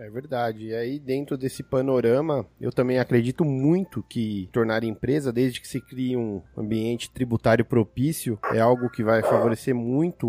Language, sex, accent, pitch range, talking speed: Portuguese, male, Brazilian, 115-145 Hz, 165 wpm